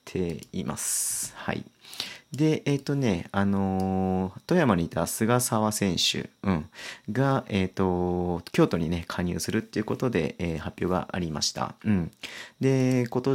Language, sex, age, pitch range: Japanese, male, 40-59, 90-115 Hz